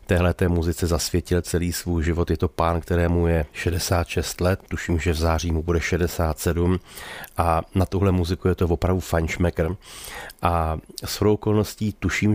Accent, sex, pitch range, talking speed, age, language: native, male, 85-95 Hz, 160 wpm, 30-49, Czech